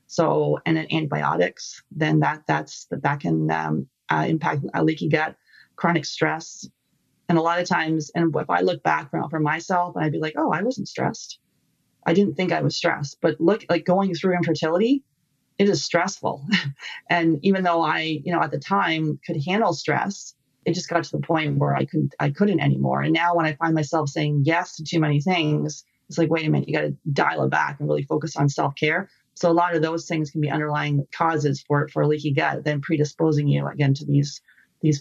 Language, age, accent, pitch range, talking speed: English, 30-49, American, 150-170 Hz, 220 wpm